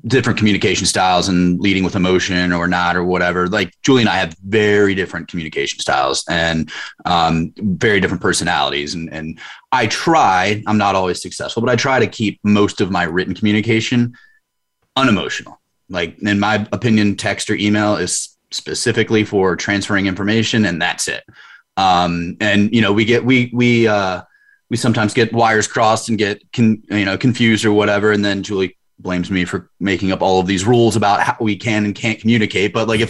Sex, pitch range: male, 95-115 Hz